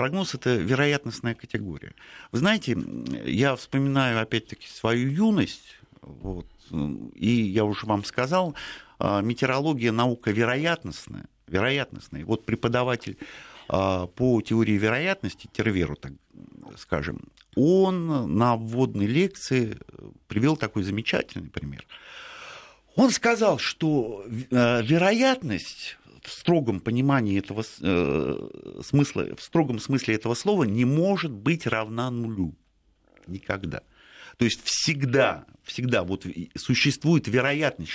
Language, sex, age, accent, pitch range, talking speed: Russian, male, 50-69, native, 100-135 Hz, 100 wpm